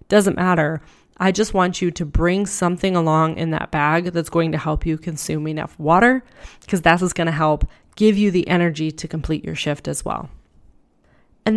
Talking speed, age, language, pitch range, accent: 190 wpm, 20-39, English, 160-185 Hz, American